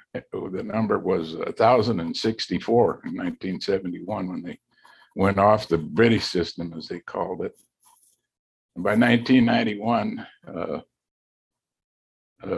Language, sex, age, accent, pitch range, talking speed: English, male, 60-79, American, 90-115 Hz, 120 wpm